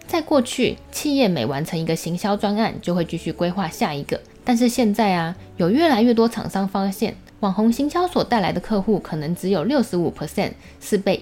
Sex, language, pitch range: female, Chinese, 175-235 Hz